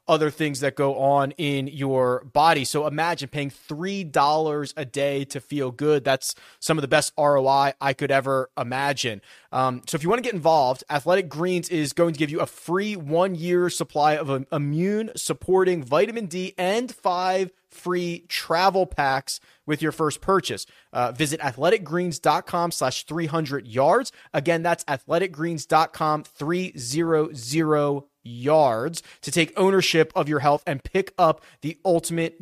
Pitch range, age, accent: 145-190 Hz, 30-49, American